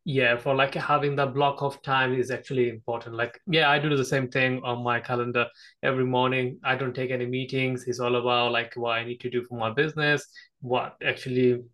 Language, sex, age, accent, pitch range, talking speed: English, male, 20-39, Indian, 120-135 Hz, 215 wpm